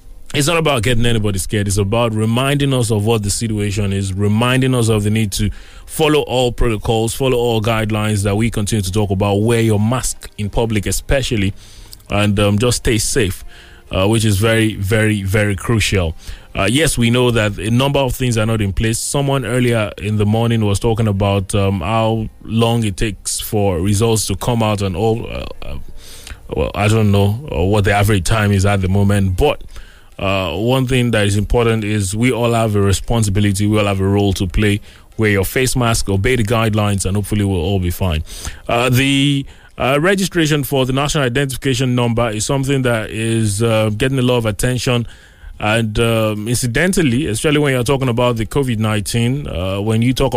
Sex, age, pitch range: male, 20-39, 100-125 Hz